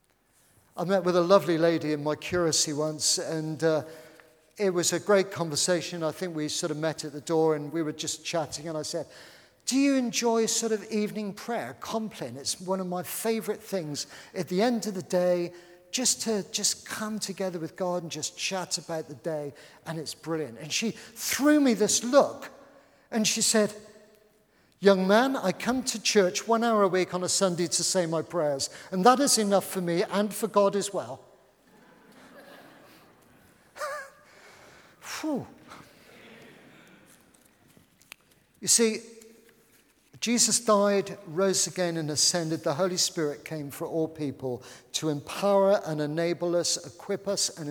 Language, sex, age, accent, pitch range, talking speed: English, male, 50-69, British, 155-215 Hz, 165 wpm